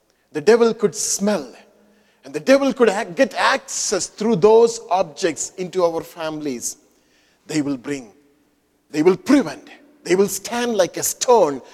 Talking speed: 145 wpm